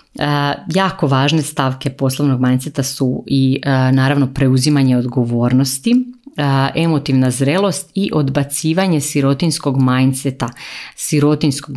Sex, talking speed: female, 95 wpm